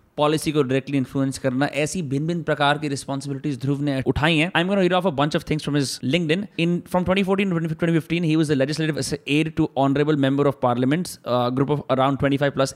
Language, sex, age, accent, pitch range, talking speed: Hindi, male, 20-39, native, 135-175 Hz, 185 wpm